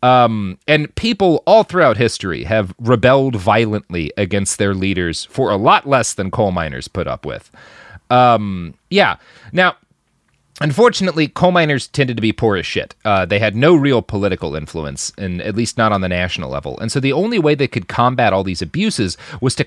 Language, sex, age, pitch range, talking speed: English, male, 30-49, 95-140 Hz, 190 wpm